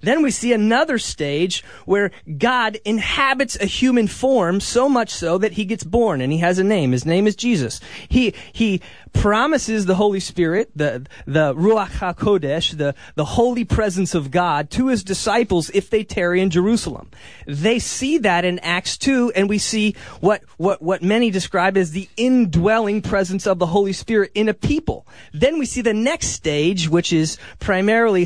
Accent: American